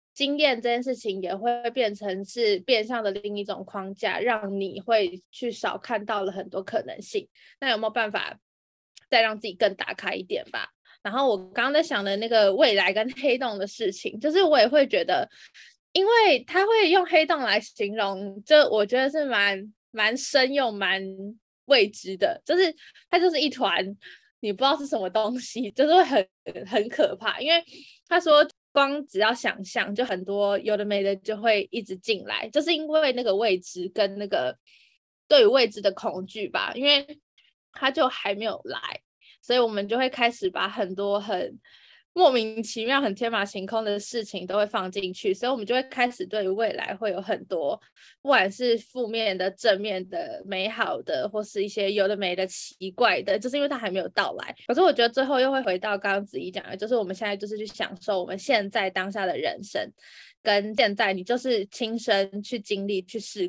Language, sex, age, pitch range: Chinese, female, 20-39, 200-265 Hz